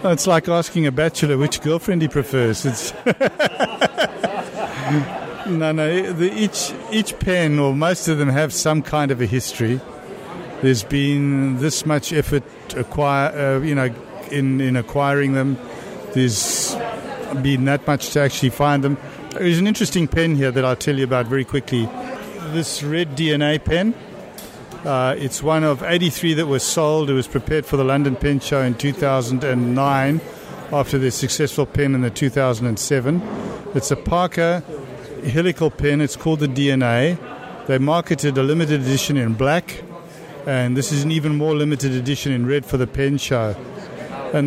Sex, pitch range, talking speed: male, 135-160 Hz, 160 wpm